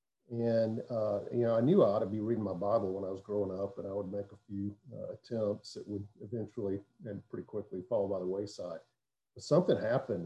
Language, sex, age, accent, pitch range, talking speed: English, male, 50-69, American, 105-130 Hz, 230 wpm